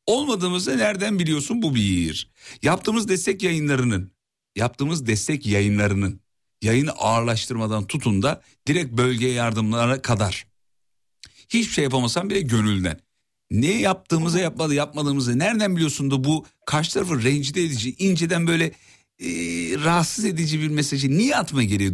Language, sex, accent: Turkish, male, native